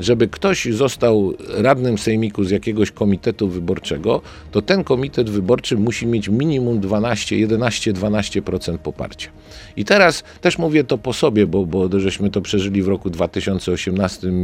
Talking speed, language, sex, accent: 145 wpm, Polish, male, native